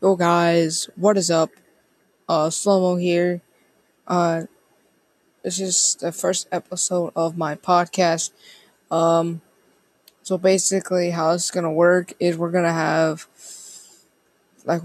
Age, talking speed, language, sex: 20-39, 115 wpm, English, female